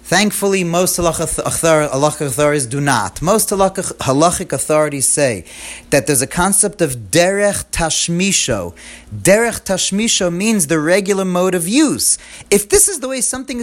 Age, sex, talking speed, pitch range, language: 30-49, male, 140 wpm, 150-215 Hz, English